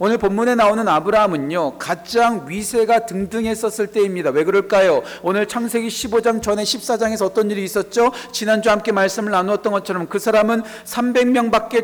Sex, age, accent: male, 40-59, native